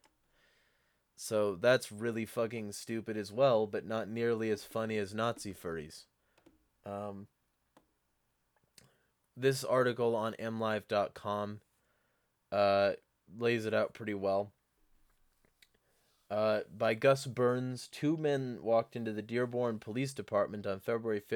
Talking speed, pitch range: 110 wpm, 95-115 Hz